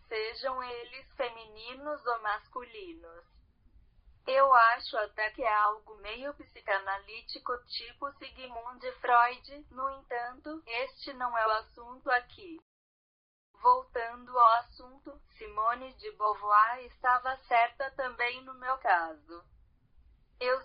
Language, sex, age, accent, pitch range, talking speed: Portuguese, female, 10-29, Brazilian, 225-265 Hz, 110 wpm